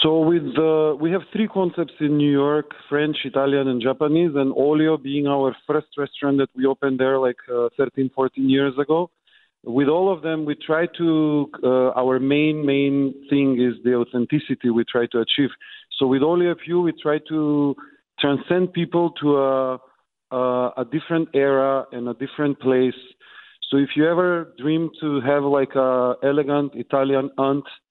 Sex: male